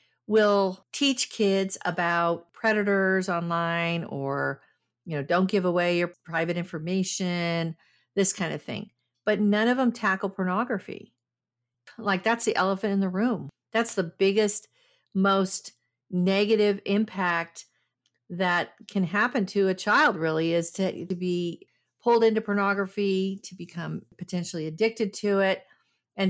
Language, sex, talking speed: English, female, 135 wpm